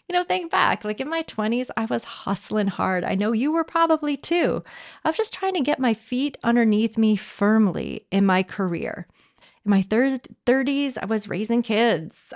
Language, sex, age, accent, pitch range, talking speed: English, female, 30-49, American, 195-255 Hz, 190 wpm